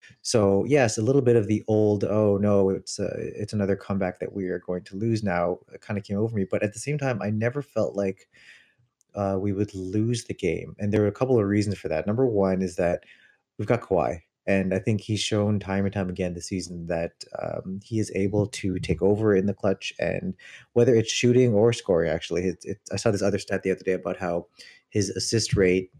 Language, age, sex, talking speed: English, 30-49, male, 235 wpm